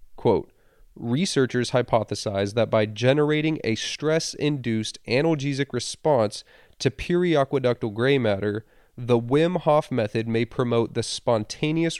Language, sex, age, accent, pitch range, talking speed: English, male, 30-49, American, 110-140 Hz, 110 wpm